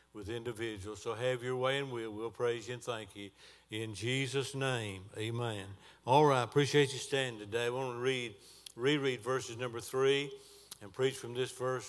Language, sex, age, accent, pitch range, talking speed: English, male, 60-79, American, 120-140 Hz, 190 wpm